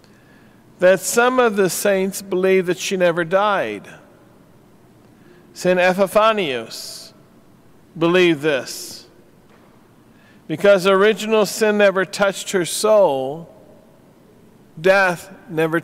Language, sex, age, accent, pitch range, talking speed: English, male, 50-69, American, 170-200 Hz, 85 wpm